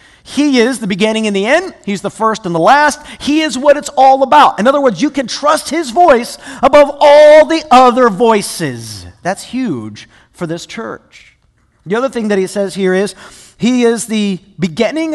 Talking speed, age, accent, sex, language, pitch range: 195 wpm, 40-59, American, male, English, 200-270 Hz